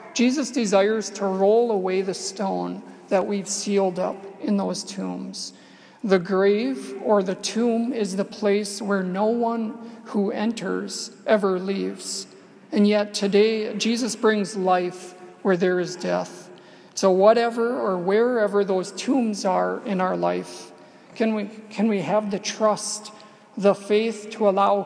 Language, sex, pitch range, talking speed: English, male, 185-215 Hz, 140 wpm